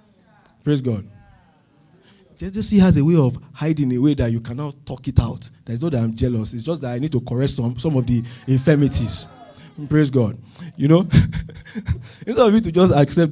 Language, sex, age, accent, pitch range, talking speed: English, male, 20-39, Nigerian, 120-155 Hz, 195 wpm